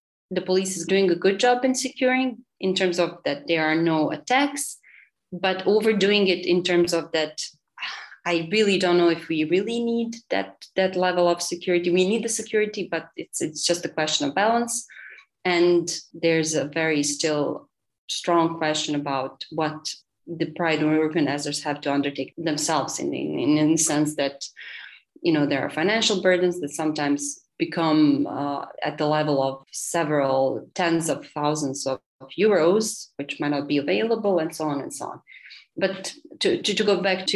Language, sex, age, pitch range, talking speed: English, female, 30-49, 150-190 Hz, 175 wpm